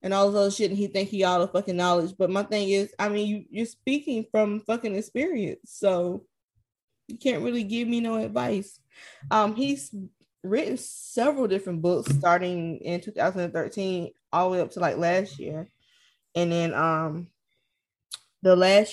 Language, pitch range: English, 165-205 Hz